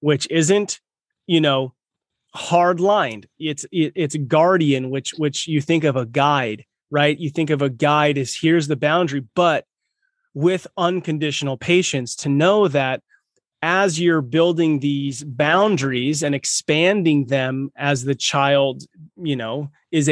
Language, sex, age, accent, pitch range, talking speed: English, male, 30-49, American, 140-165 Hz, 140 wpm